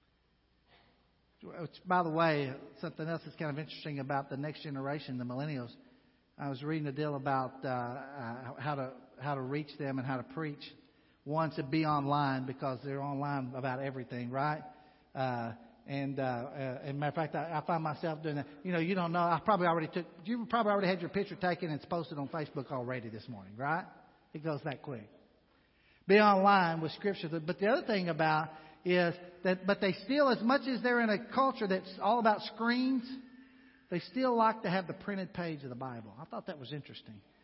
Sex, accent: male, American